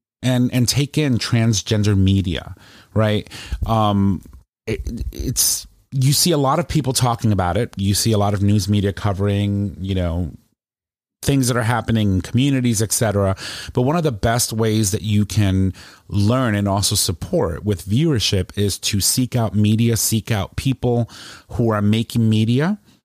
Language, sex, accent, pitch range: English, male, American, 95-115 Hz